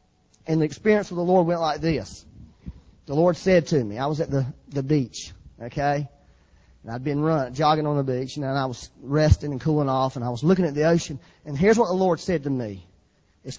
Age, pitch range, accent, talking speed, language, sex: 40-59, 115-170 Hz, American, 225 wpm, English, male